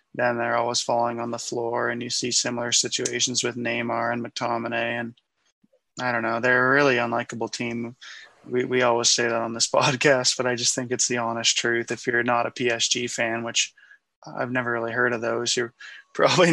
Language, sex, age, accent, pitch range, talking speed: English, male, 20-39, American, 120-130 Hz, 205 wpm